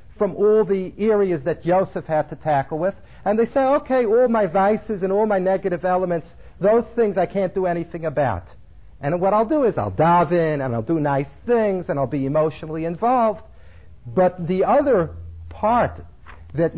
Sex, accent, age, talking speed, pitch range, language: male, American, 50-69, 185 wpm, 115-180 Hz, English